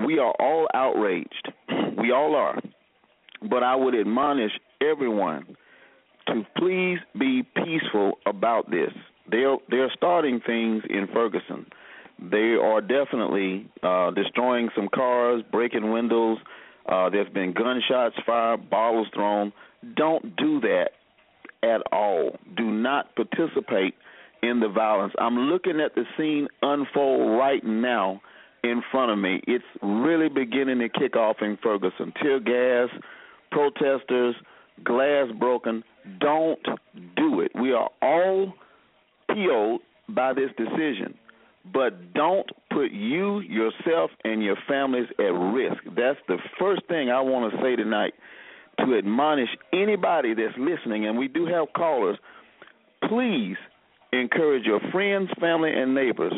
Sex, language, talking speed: male, English, 130 wpm